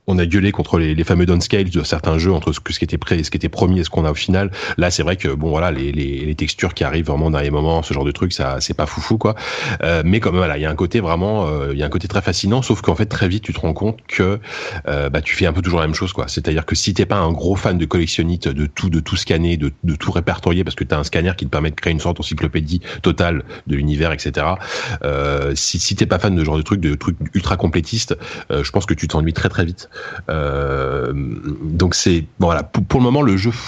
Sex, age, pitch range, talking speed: male, 30-49, 75-95 Hz, 295 wpm